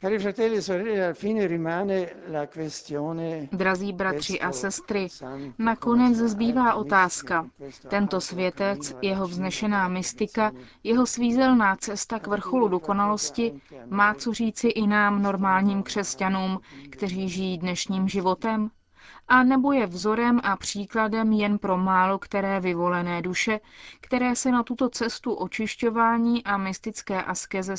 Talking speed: 110 wpm